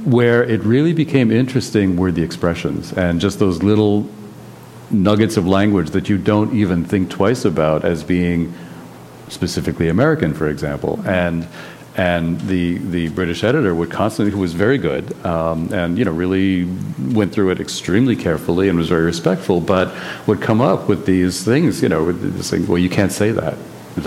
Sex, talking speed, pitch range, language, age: male, 175 wpm, 85-105 Hz, English, 50-69